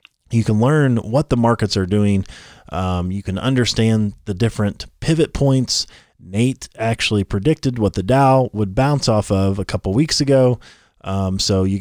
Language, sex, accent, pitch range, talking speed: English, male, American, 100-130 Hz, 170 wpm